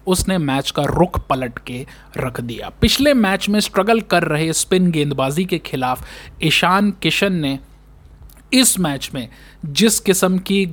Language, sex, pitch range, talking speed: Hindi, male, 140-190 Hz, 150 wpm